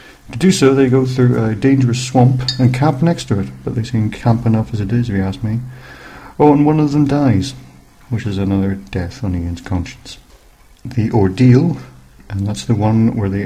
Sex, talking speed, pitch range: male, 210 wpm, 105-130 Hz